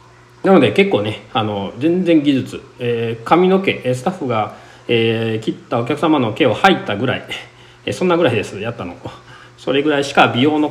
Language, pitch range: Japanese, 120-195 Hz